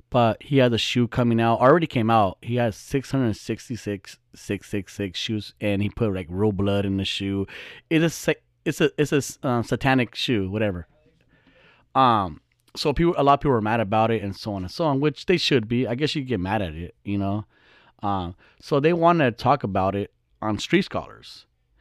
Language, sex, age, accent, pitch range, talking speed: English, male, 30-49, American, 105-130 Hz, 205 wpm